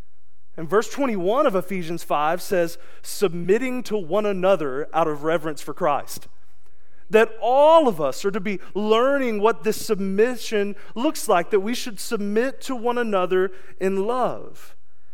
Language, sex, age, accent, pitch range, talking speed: English, male, 30-49, American, 155-210 Hz, 150 wpm